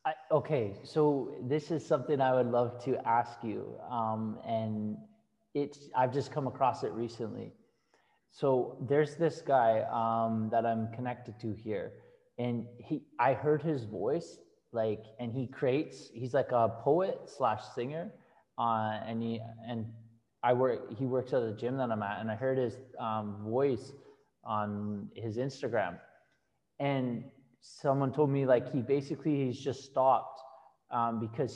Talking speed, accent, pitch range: 155 wpm, American, 115-150 Hz